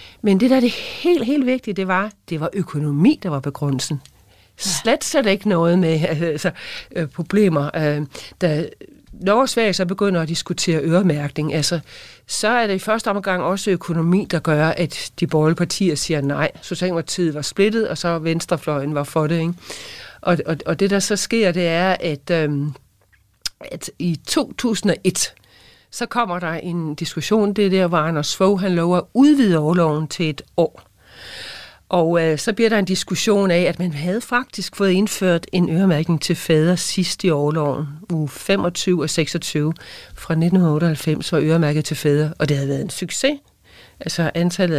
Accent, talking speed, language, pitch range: native, 180 wpm, Danish, 155-195 Hz